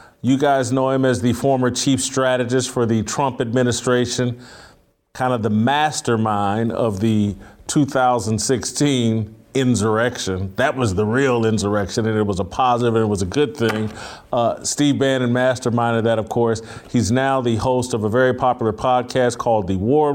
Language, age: English, 40-59